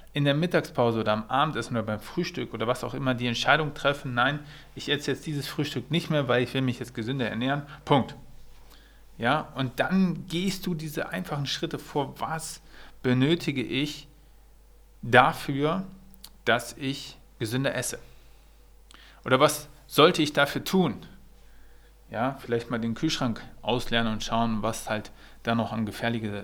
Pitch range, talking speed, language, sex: 105-150 Hz, 160 wpm, German, male